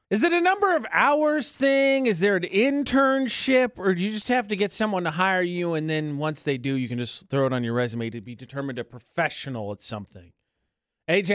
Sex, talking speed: male, 225 wpm